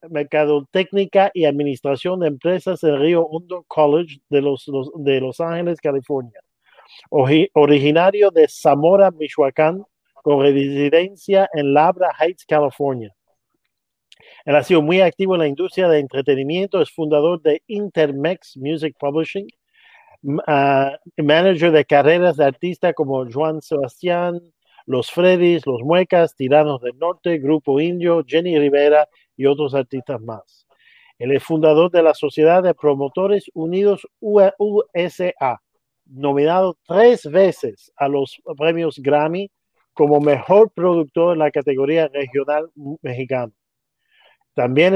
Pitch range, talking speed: 145-180 Hz, 125 wpm